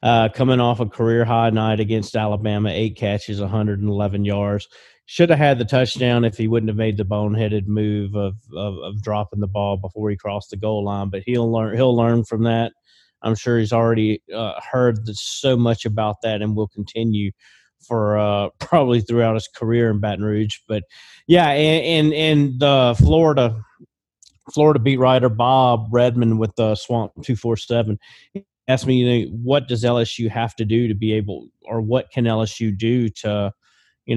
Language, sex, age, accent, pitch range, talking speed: English, male, 30-49, American, 105-120 Hz, 190 wpm